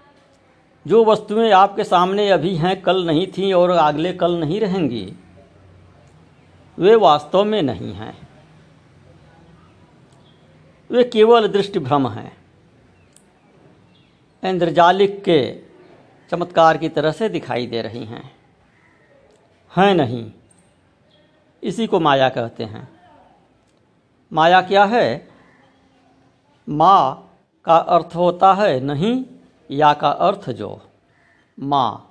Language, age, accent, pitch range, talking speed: Hindi, 60-79, native, 150-210 Hz, 100 wpm